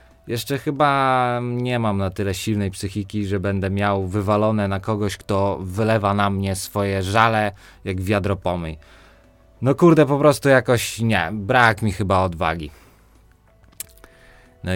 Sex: male